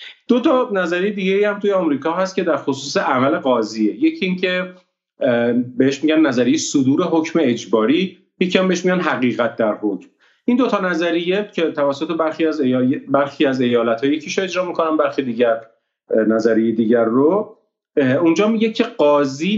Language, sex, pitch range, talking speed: Persian, male, 130-185 Hz, 155 wpm